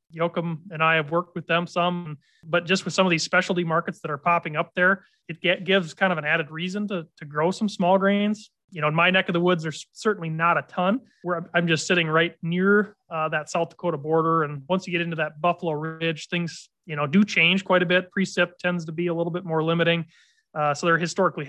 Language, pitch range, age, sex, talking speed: English, 160-185 Hz, 30-49, male, 245 wpm